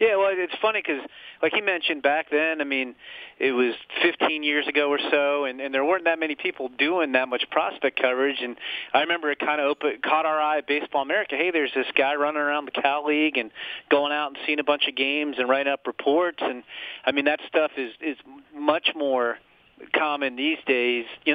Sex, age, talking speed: male, 40-59, 220 wpm